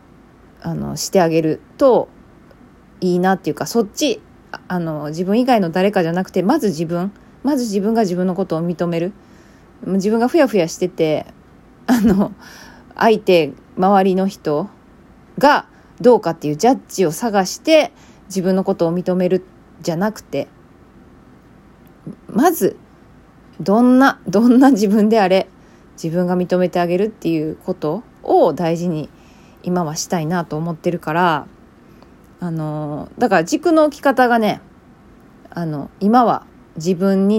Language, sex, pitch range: Japanese, female, 165-225 Hz